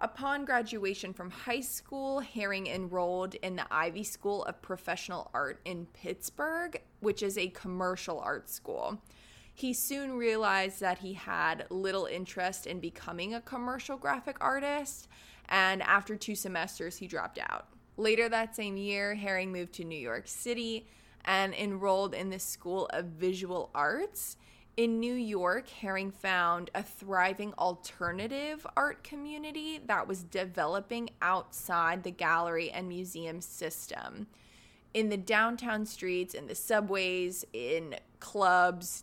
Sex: female